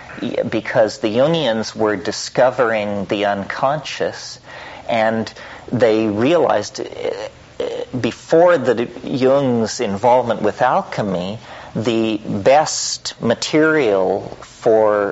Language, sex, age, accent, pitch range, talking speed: English, male, 50-69, American, 105-130 Hz, 80 wpm